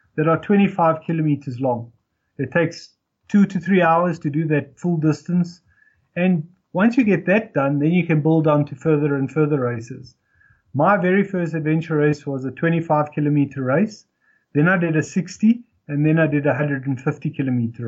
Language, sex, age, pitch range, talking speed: English, male, 30-49, 145-180 Hz, 175 wpm